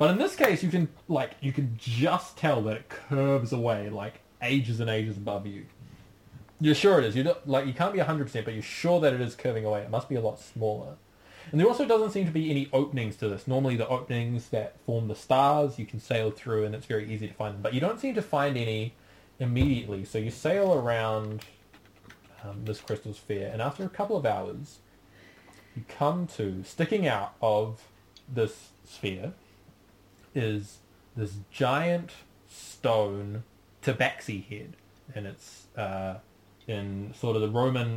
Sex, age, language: male, 20-39, English